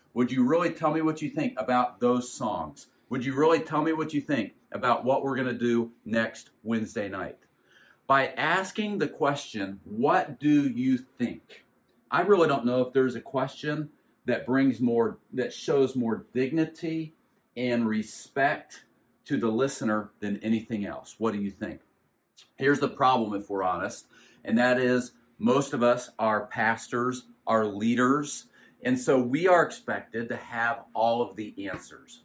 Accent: American